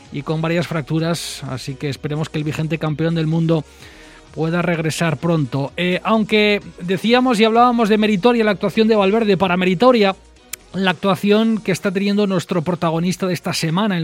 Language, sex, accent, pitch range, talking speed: Spanish, male, Spanish, 160-200 Hz, 170 wpm